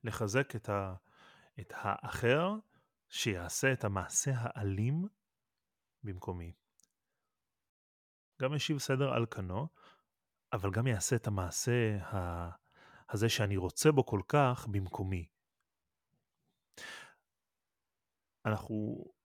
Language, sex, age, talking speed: Hebrew, male, 30-49, 80 wpm